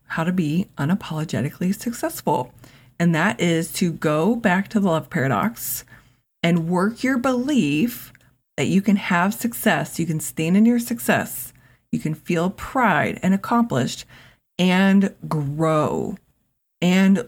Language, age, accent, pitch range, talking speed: English, 20-39, American, 155-205 Hz, 135 wpm